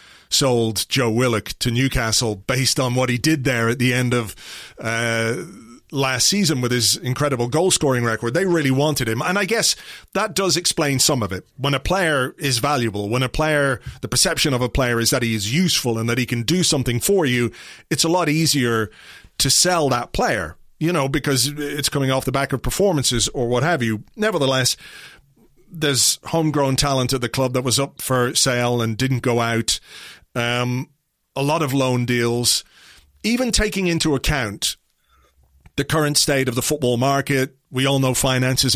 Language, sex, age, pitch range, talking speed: English, male, 30-49, 120-150 Hz, 185 wpm